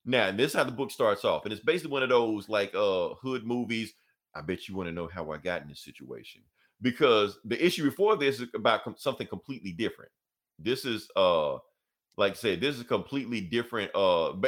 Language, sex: English, male